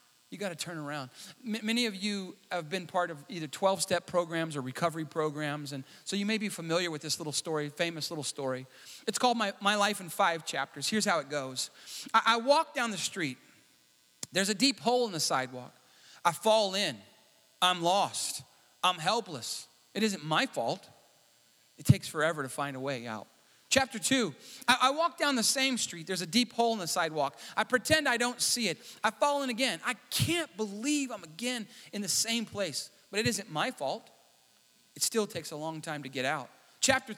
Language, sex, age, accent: English, male, 30-49, American